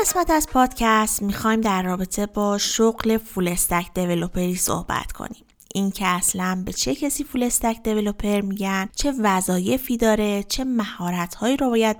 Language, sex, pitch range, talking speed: Persian, female, 195-245 Hz, 140 wpm